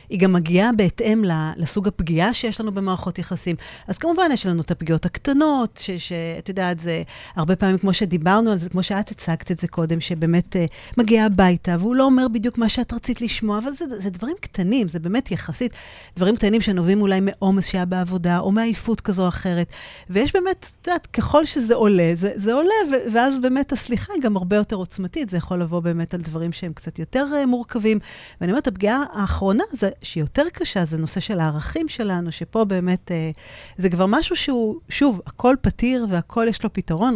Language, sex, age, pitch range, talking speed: Hebrew, female, 30-49, 170-225 Hz, 170 wpm